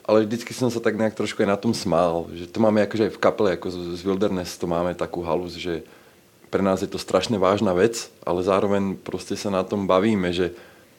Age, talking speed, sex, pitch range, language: 30-49, 215 wpm, male, 90-105 Hz, Czech